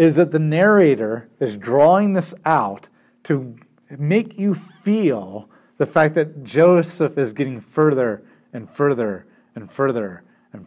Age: 40-59